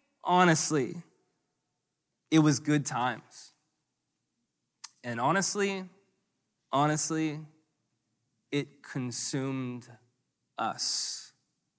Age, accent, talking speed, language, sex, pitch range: 20-39, American, 55 wpm, English, male, 120-155 Hz